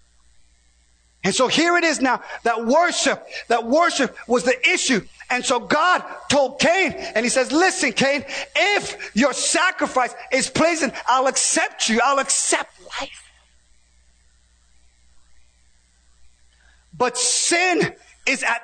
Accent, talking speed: American, 120 wpm